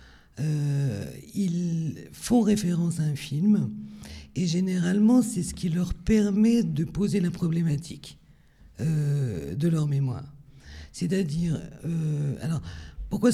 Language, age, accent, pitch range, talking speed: French, 50-69, French, 130-175 Hz, 115 wpm